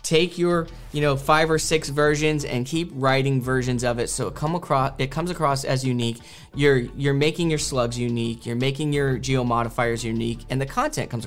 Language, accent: English, American